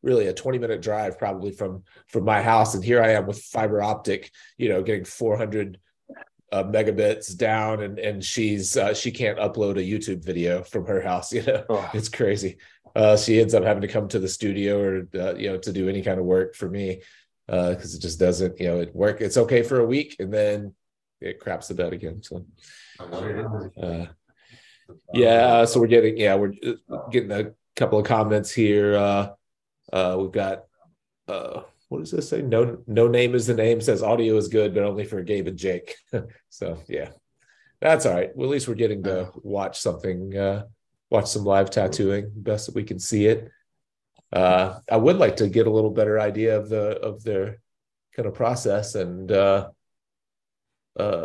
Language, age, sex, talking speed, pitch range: English, 30-49, male, 195 wpm, 95-110 Hz